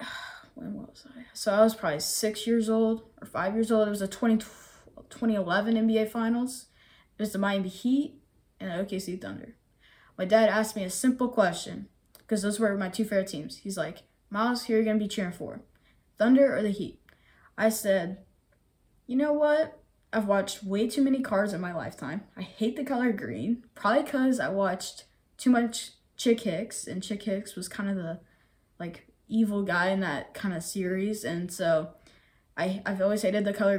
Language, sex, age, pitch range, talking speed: English, female, 10-29, 190-225 Hz, 195 wpm